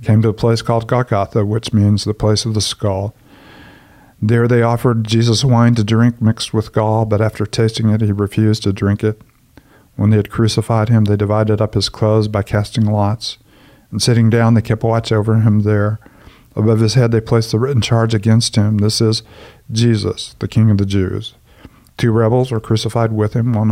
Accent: American